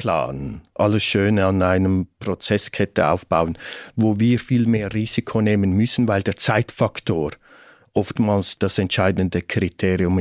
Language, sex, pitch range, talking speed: German, male, 100-120 Hz, 125 wpm